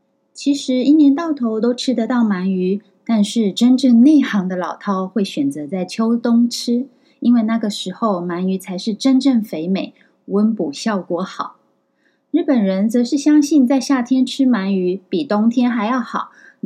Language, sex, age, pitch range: Chinese, female, 20-39, 185-255 Hz